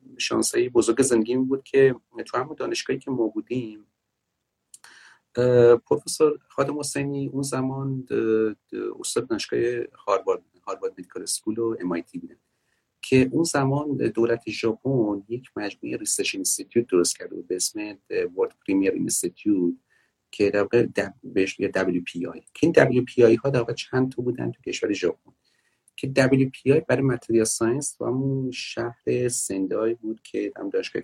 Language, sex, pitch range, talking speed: Persian, male, 110-165 Hz, 135 wpm